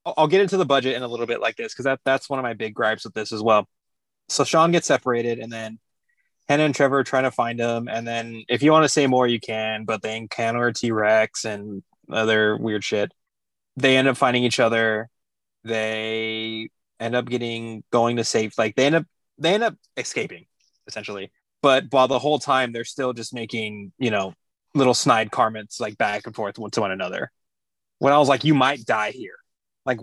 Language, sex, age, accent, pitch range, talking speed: English, male, 20-39, American, 110-140 Hz, 215 wpm